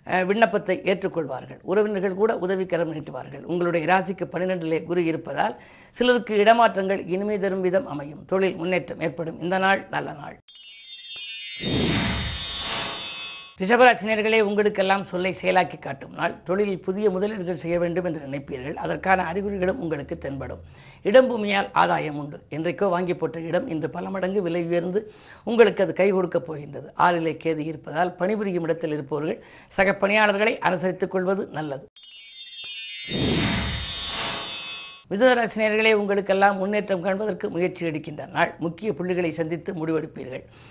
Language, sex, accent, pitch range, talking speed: Tamil, female, native, 165-200 Hz, 120 wpm